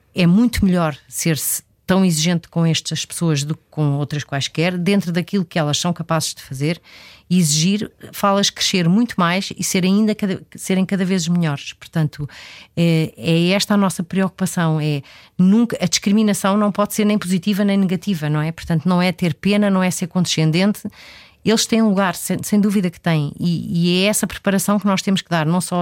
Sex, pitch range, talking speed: female, 160-195 Hz, 190 wpm